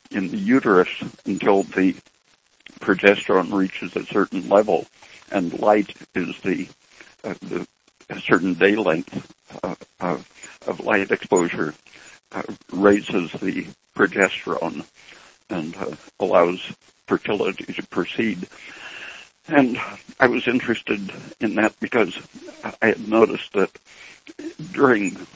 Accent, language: American, English